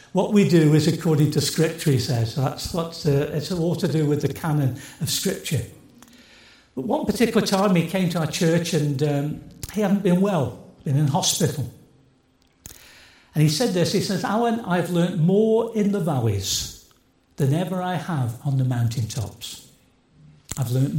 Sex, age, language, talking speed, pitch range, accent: male, 60-79, English, 175 wpm, 140-185 Hz, British